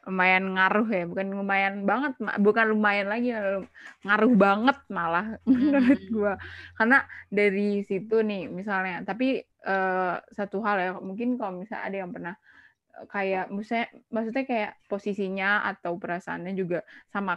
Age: 20-39